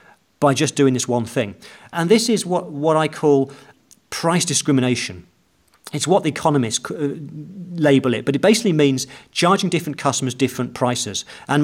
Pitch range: 135-180 Hz